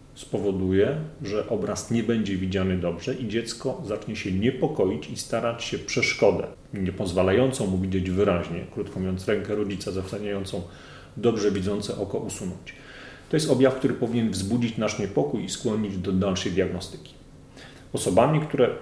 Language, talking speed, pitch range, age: Polish, 140 wpm, 95-115 Hz, 40-59